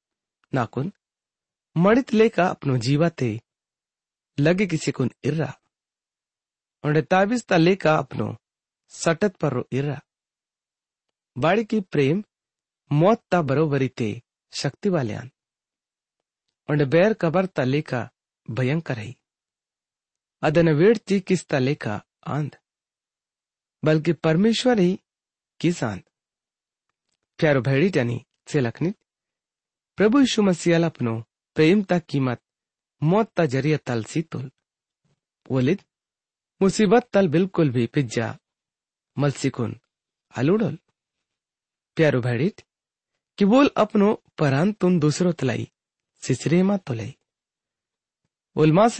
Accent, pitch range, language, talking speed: Indian, 130-185 Hz, English, 85 wpm